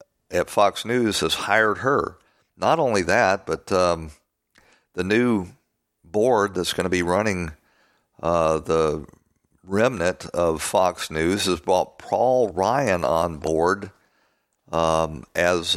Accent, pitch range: American, 80-90 Hz